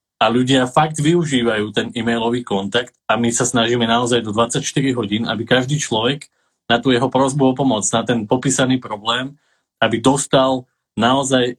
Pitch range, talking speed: 115-135 Hz, 155 wpm